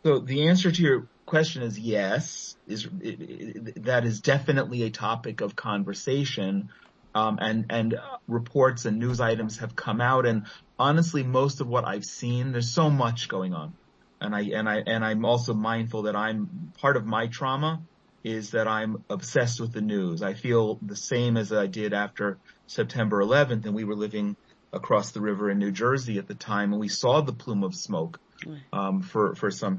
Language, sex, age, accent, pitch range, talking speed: English, male, 30-49, American, 105-130 Hz, 190 wpm